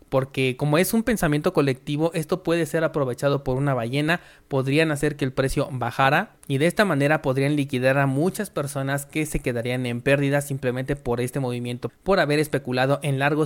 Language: Spanish